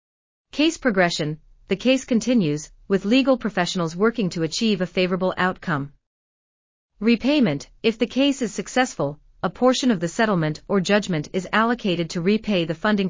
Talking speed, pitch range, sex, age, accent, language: 150 wpm, 165-225 Hz, female, 40-59, American, English